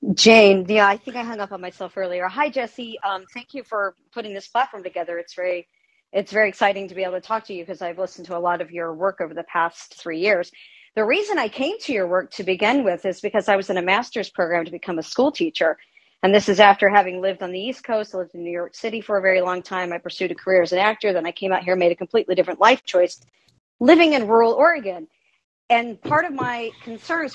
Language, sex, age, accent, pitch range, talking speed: English, male, 40-59, American, 185-235 Hz, 260 wpm